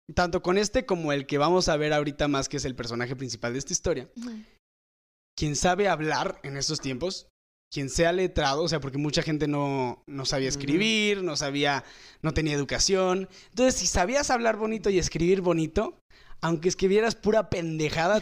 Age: 20-39